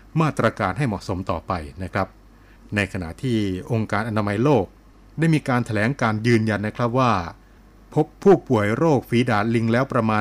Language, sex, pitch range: Thai, male, 100-120 Hz